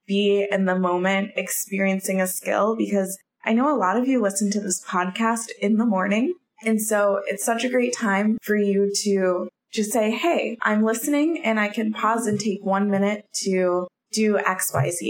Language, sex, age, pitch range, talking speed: English, female, 20-39, 185-225 Hz, 185 wpm